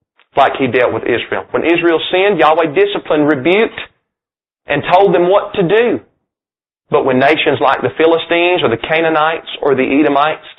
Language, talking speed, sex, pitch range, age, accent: English, 165 wpm, male, 145-200 Hz, 30-49, American